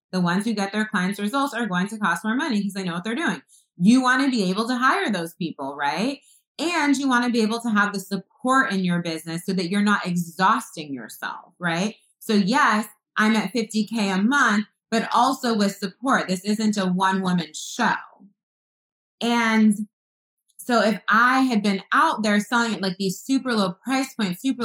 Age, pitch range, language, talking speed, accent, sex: 20-39, 180-230 Hz, English, 200 wpm, American, female